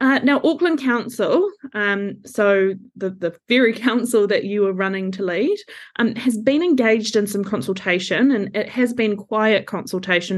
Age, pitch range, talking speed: 20-39, 195-245 Hz, 170 wpm